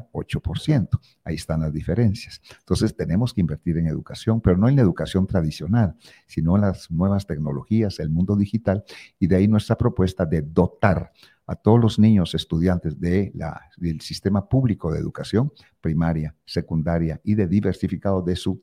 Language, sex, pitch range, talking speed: Spanish, male, 85-105 Hz, 165 wpm